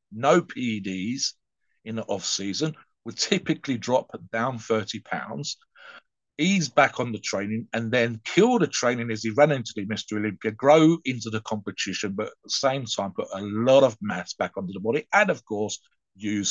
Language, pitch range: English, 110-140 Hz